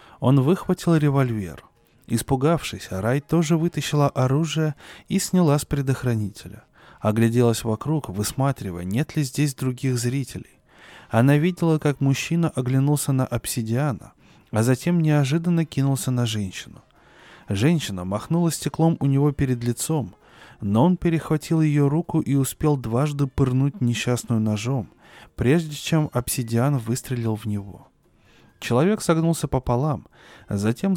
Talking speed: 120 wpm